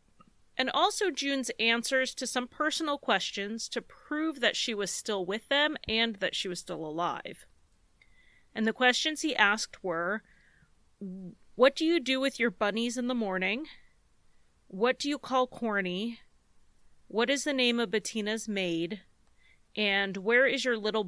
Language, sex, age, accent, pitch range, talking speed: English, female, 30-49, American, 195-250 Hz, 155 wpm